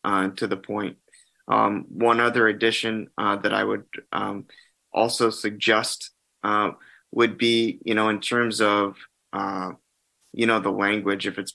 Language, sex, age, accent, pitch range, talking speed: English, male, 20-39, American, 105-120 Hz, 155 wpm